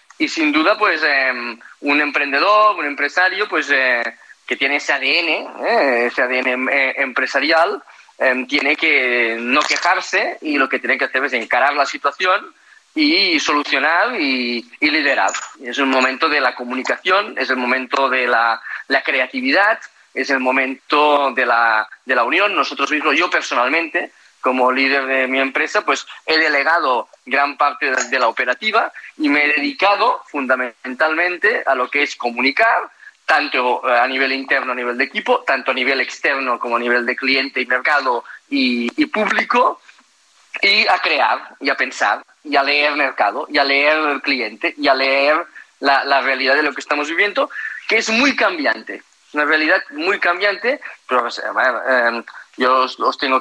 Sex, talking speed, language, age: male, 170 wpm, Spanish, 30-49